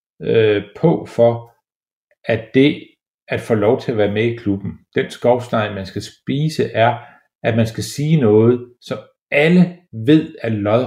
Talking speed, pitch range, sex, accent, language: 160 wpm, 105-140 Hz, male, native, Danish